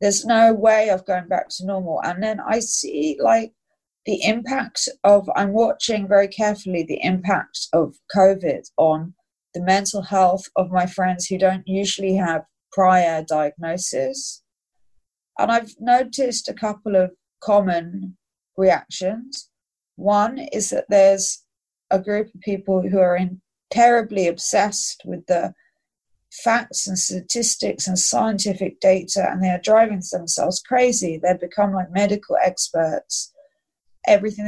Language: Danish